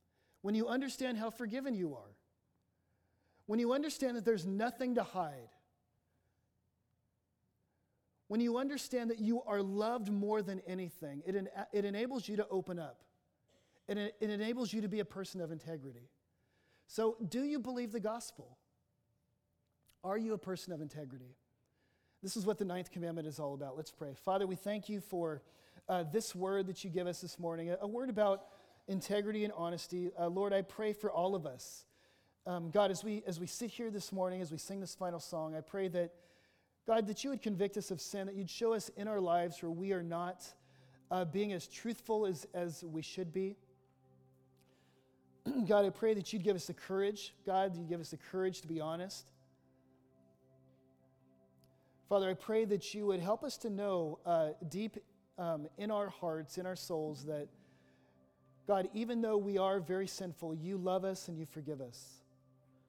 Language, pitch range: English, 140-205 Hz